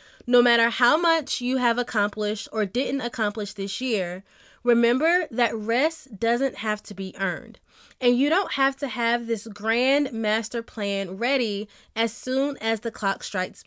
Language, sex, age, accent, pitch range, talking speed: English, female, 20-39, American, 205-260 Hz, 165 wpm